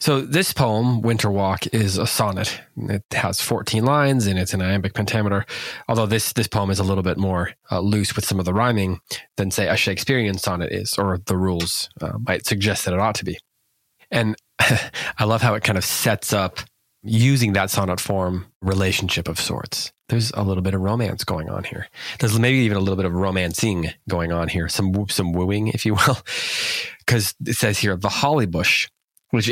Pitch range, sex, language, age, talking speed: 95-110 Hz, male, English, 20-39, 205 wpm